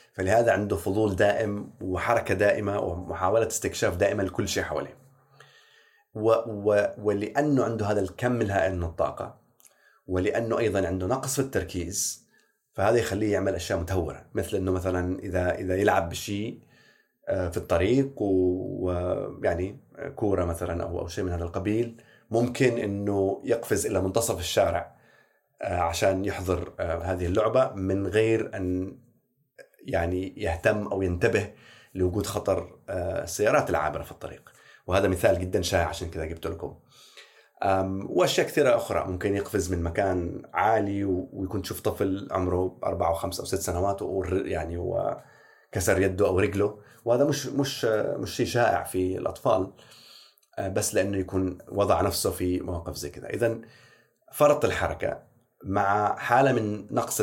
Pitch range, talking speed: 90-115 Hz, 135 wpm